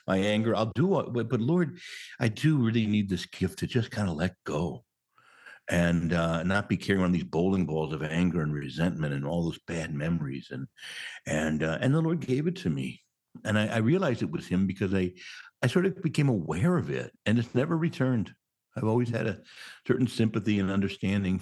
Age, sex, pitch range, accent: 60-79, male, 95-140 Hz, American